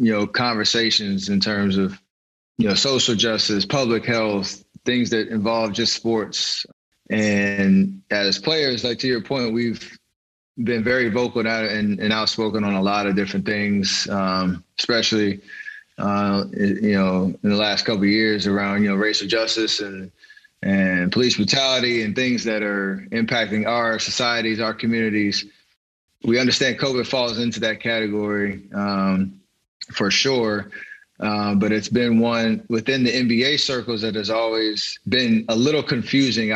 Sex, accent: male, American